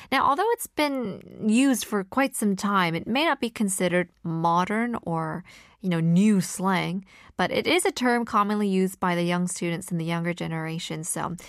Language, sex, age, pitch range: Korean, female, 20-39, 180-230 Hz